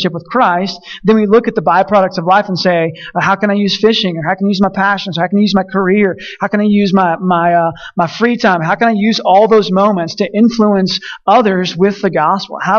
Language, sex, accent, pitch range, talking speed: English, male, American, 180-215 Hz, 260 wpm